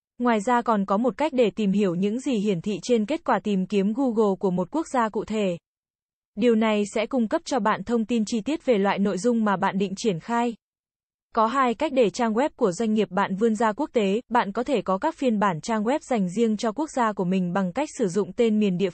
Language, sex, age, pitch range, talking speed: Vietnamese, female, 20-39, 200-245 Hz, 260 wpm